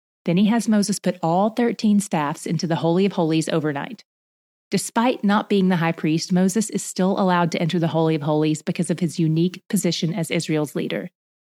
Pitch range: 170-210 Hz